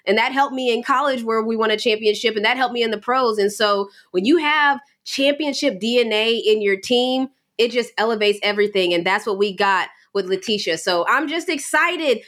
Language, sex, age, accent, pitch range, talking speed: English, female, 20-39, American, 215-285 Hz, 210 wpm